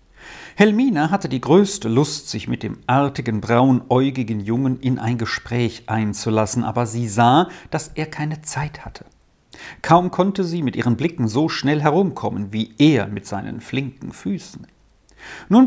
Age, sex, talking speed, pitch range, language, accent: 50-69, male, 150 wpm, 110-165 Hz, German, German